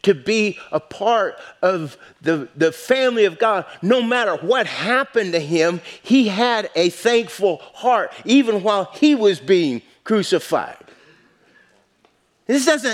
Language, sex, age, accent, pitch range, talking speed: English, male, 50-69, American, 165-225 Hz, 130 wpm